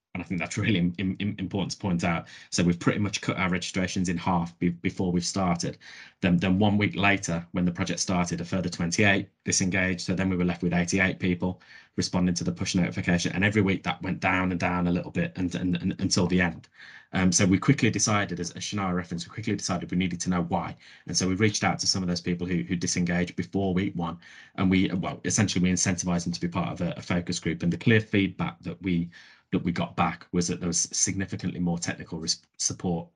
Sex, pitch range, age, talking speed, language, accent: male, 90-100 Hz, 20-39, 240 wpm, English, British